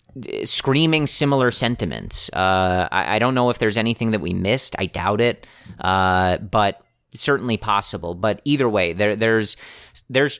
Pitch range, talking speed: 95-115 Hz, 155 wpm